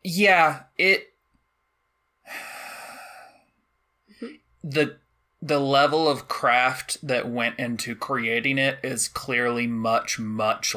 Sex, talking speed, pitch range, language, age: male, 90 wpm, 115-150 Hz, English, 20-39